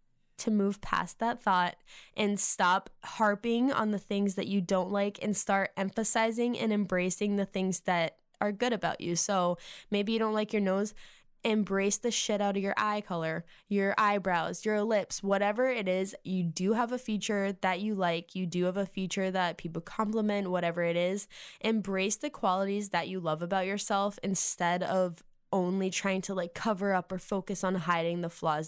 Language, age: English, 10-29